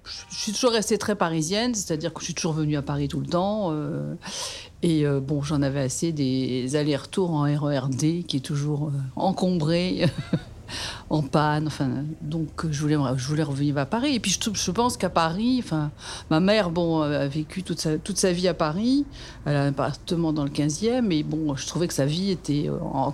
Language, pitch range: French, 150-195 Hz